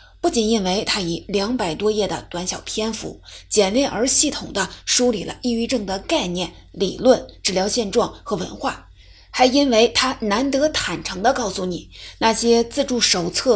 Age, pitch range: 30-49, 190-255 Hz